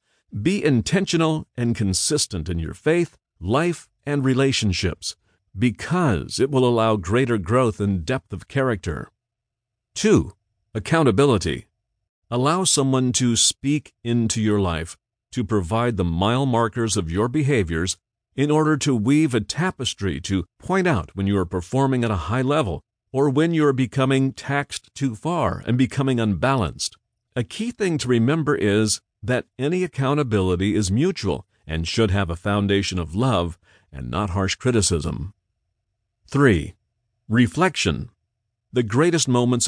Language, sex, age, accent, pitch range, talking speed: English, male, 50-69, American, 100-135 Hz, 140 wpm